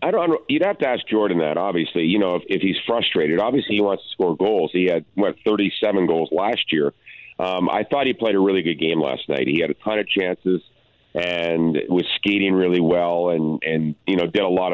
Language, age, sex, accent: English, 50-69, male, American